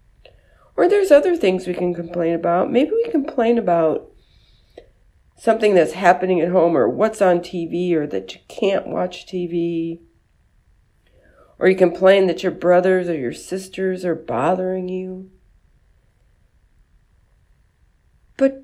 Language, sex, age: English, female, 50-69